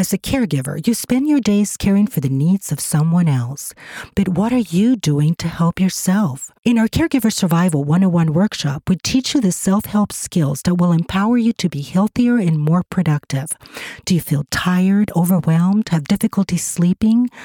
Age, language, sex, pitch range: 40-59, English, female, 170-245 Hz